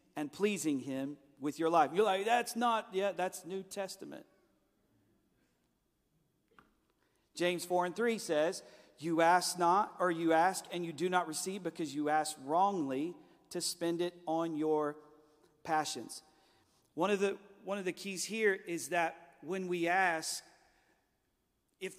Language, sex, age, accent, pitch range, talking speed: English, male, 40-59, American, 160-195 Hz, 140 wpm